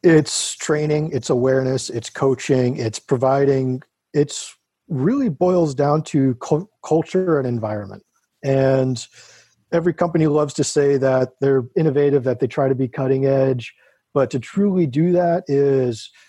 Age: 40-59